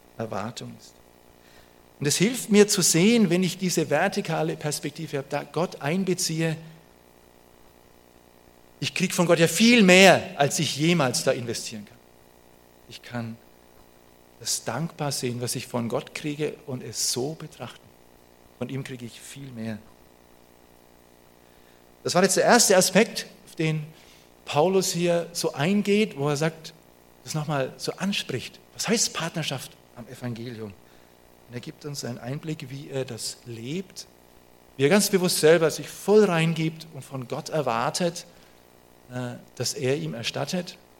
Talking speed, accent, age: 145 wpm, German, 50-69